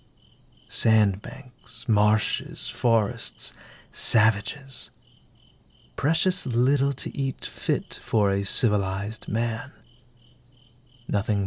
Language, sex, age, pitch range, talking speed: English, male, 30-49, 105-125 Hz, 75 wpm